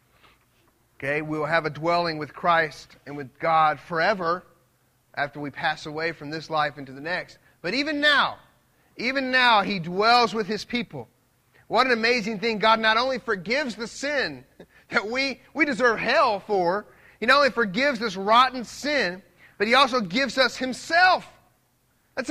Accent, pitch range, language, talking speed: American, 185-240 Hz, English, 165 wpm